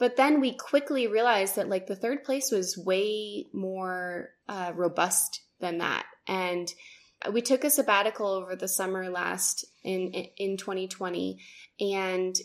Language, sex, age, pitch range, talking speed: English, female, 10-29, 180-205 Hz, 145 wpm